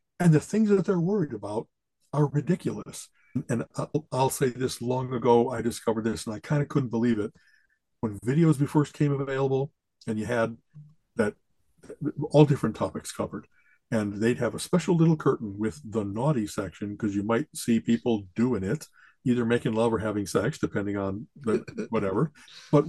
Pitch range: 115-165 Hz